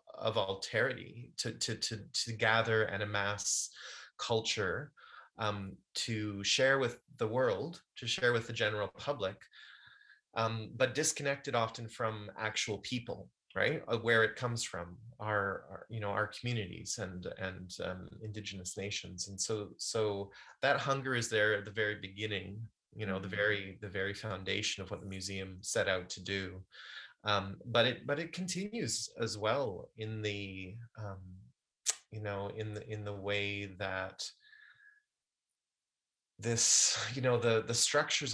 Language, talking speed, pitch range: English, 150 wpm, 100-115 Hz